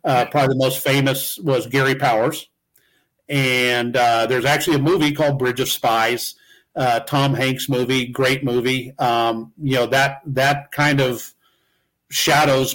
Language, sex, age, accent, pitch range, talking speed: English, male, 50-69, American, 125-145 Hz, 150 wpm